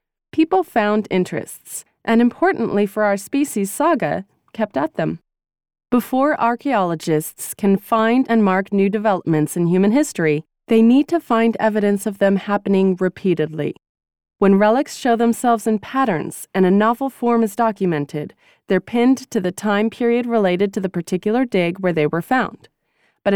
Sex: female